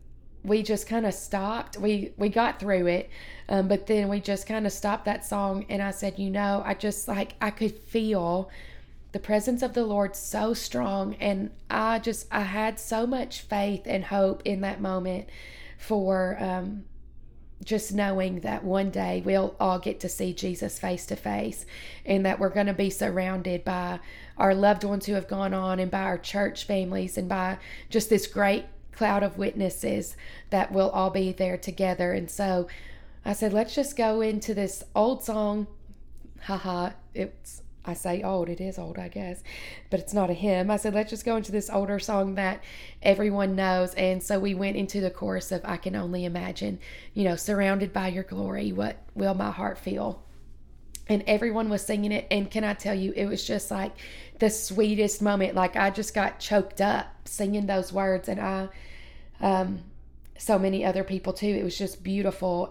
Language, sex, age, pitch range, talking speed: English, female, 20-39, 185-210 Hz, 190 wpm